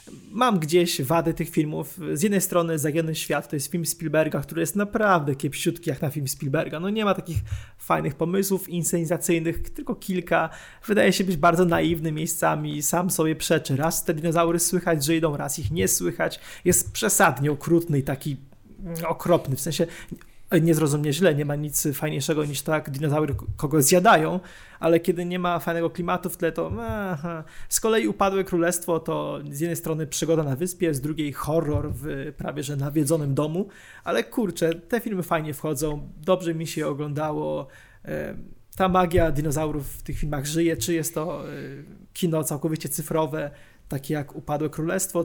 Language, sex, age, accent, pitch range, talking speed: Polish, male, 20-39, native, 150-175 Hz, 170 wpm